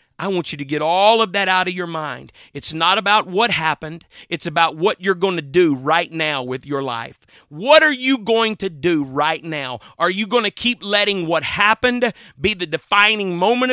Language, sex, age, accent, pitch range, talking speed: English, male, 40-59, American, 160-210 Hz, 215 wpm